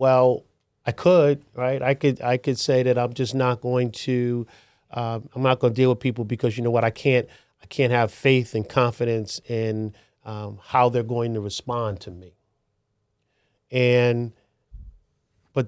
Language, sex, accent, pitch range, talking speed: English, male, American, 115-145 Hz, 175 wpm